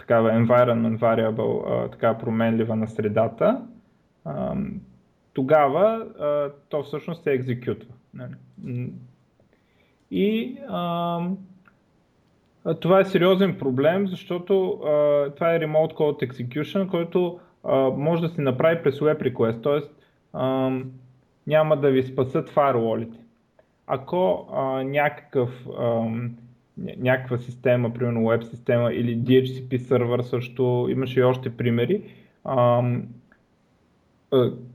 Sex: male